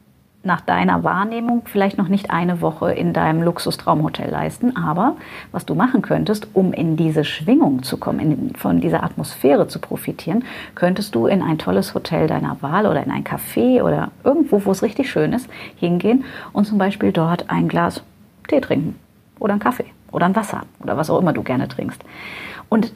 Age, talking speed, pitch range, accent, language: 40-59, 185 wpm, 180-225 Hz, German, German